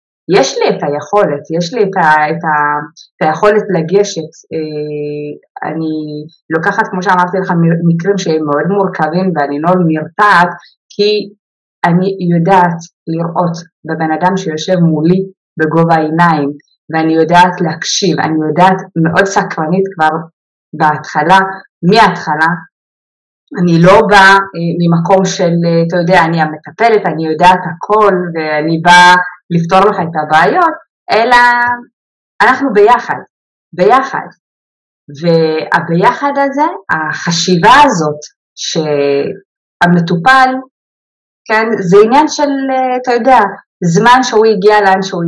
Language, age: Hebrew, 20-39